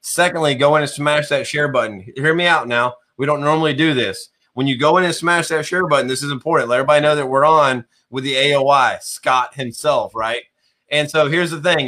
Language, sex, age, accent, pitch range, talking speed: English, male, 30-49, American, 130-150 Hz, 230 wpm